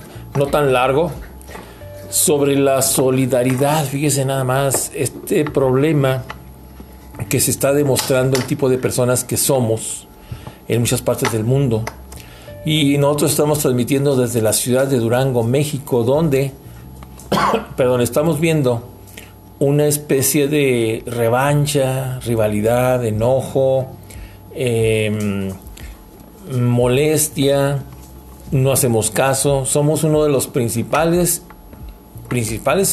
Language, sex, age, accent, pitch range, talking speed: Spanish, male, 50-69, Mexican, 110-140 Hz, 105 wpm